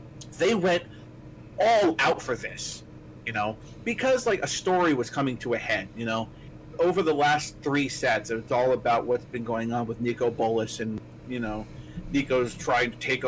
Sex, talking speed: male, 185 wpm